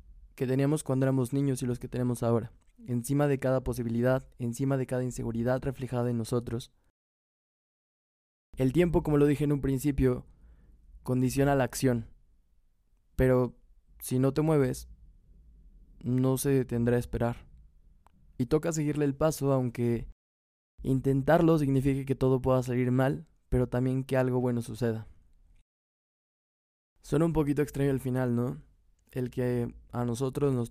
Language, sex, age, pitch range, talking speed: Spanish, male, 20-39, 115-135 Hz, 145 wpm